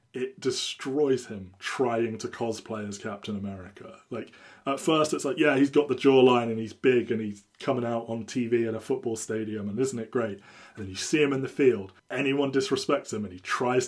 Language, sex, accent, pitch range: English, male, British, 105-135 Hz